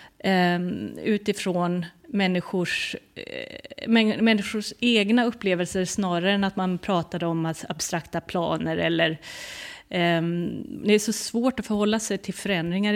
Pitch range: 180-225 Hz